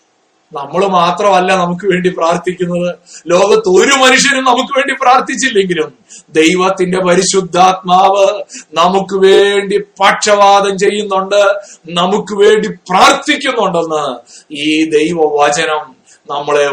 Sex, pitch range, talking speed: male, 180-270 Hz, 85 wpm